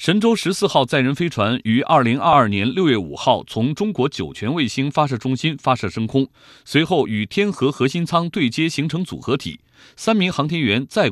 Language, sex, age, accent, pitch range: Chinese, male, 30-49, native, 125-185 Hz